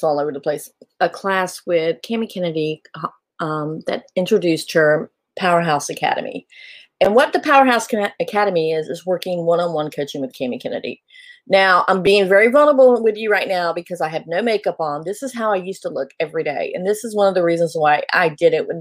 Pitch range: 160-225 Hz